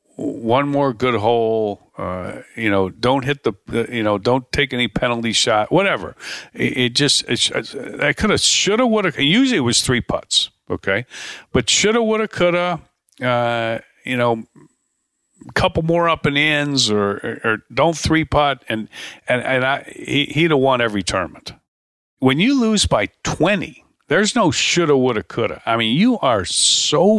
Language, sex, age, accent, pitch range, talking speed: English, male, 50-69, American, 115-170 Hz, 185 wpm